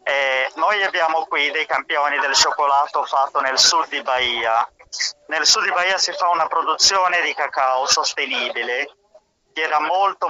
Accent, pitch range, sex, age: native, 140-170 Hz, male, 30-49